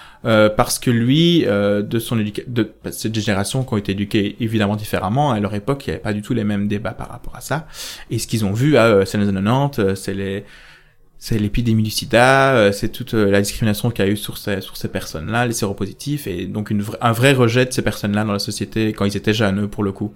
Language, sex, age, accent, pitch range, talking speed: French, male, 20-39, French, 105-125 Hz, 255 wpm